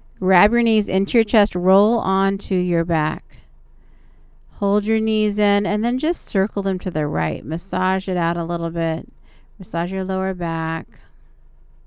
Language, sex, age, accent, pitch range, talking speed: English, female, 40-59, American, 175-225 Hz, 160 wpm